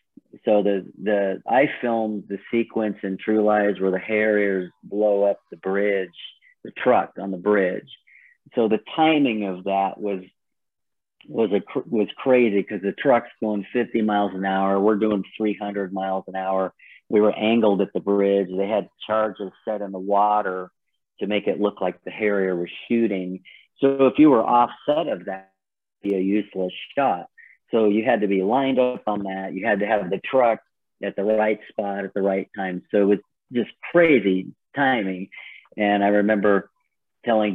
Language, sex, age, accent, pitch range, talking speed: English, male, 40-59, American, 95-110 Hz, 180 wpm